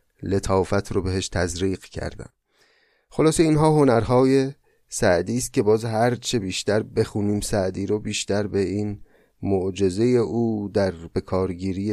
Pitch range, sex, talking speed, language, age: 100-130 Hz, male, 125 wpm, Persian, 30-49